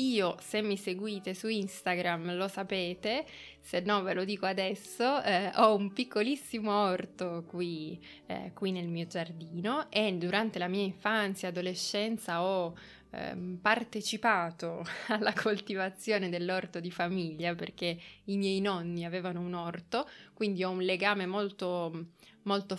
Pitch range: 180-210 Hz